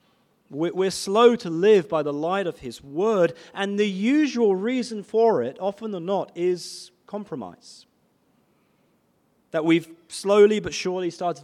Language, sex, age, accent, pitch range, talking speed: English, male, 30-49, British, 150-200 Hz, 140 wpm